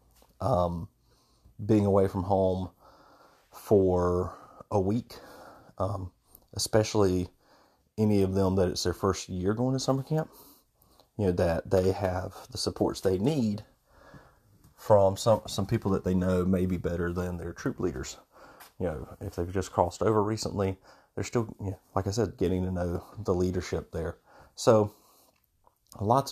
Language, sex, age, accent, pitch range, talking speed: English, male, 30-49, American, 90-110 Hz, 155 wpm